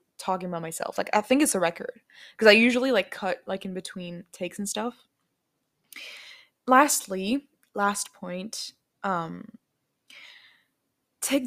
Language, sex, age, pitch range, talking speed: English, female, 20-39, 180-220 Hz, 130 wpm